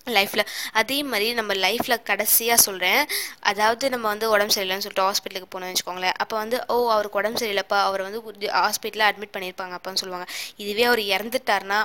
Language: Tamil